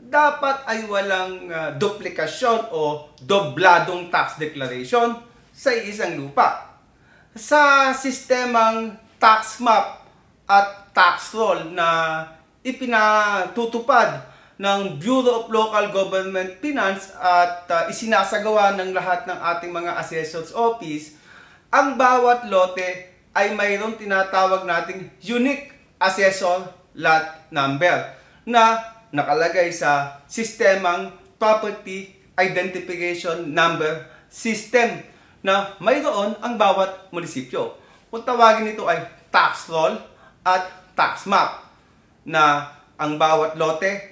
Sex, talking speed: male, 100 wpm